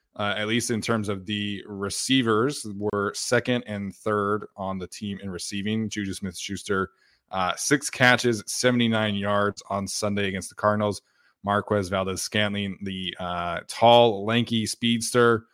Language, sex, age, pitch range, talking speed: English, male, 20-39, 100-115 Hz, 145 wpm